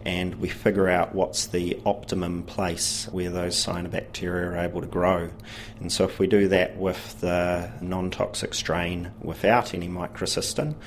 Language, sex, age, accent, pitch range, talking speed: English, male, 30-49, Australian, 90-105 Hz, 155 wpm